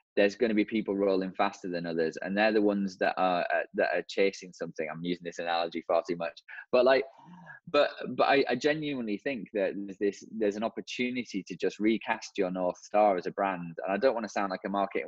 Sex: male